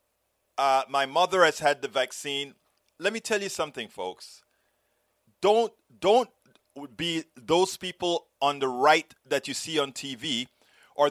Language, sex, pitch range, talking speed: English, male, 145-190 Hz, 145 wpm